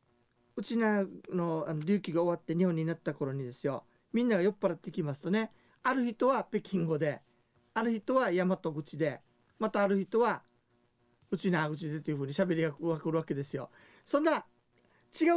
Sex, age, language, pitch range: male, 40-59, Japanese, 145-210 Hz